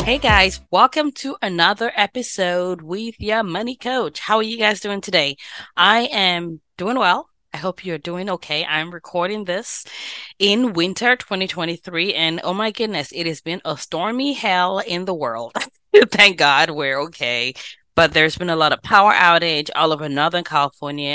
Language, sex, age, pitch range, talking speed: English, female, 20-39, 145-205 Hz, 170 wpm